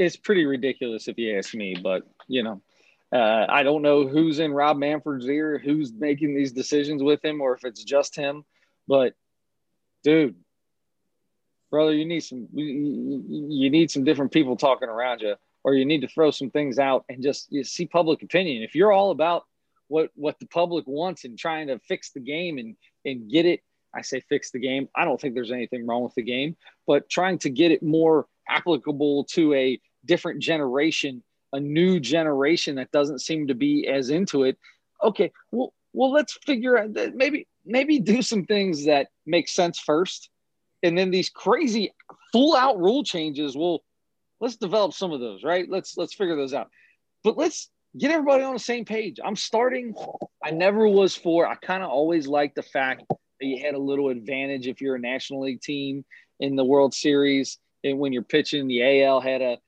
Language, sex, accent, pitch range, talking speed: English, male, American, 135-180 Hz, 195 wpm